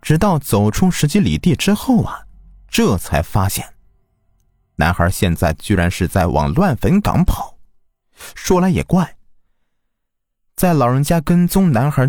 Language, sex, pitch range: Chinese, male, 85-135 Hz